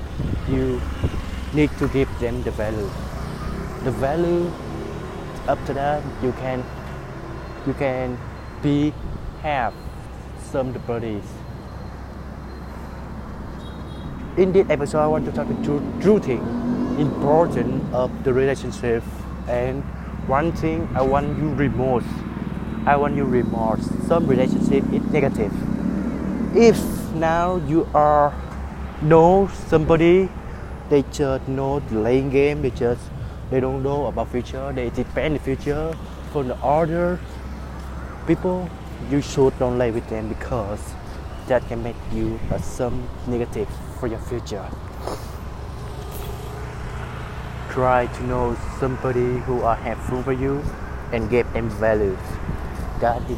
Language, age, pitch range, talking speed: Vietnamese, 20-39, 85-140 Hz, 120 wpm